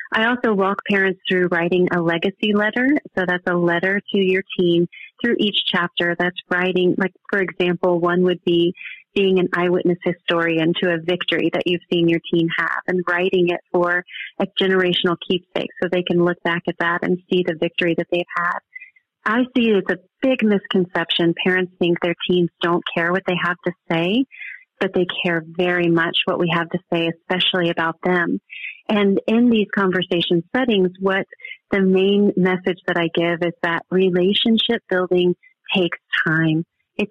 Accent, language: American, English